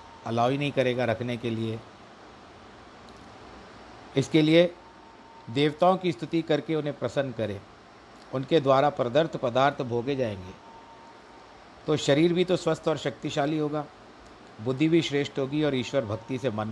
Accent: native